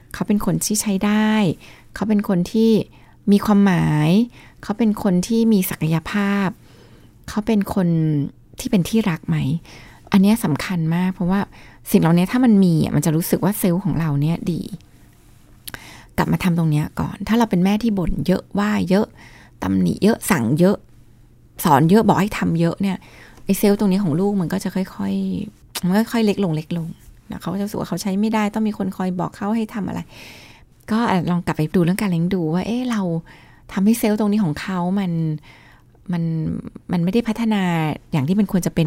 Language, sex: Thai, female